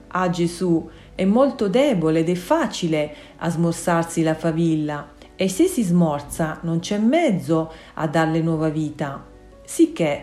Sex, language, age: female, Italian, 40-59